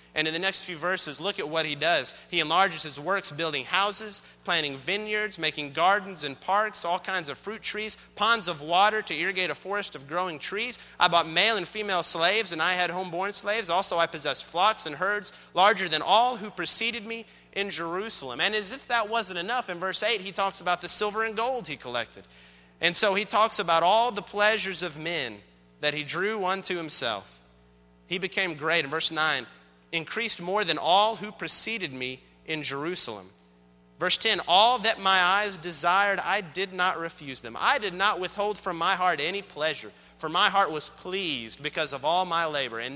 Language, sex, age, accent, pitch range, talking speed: English, male, 30-49, American, 145-200 Hz, 200 wpm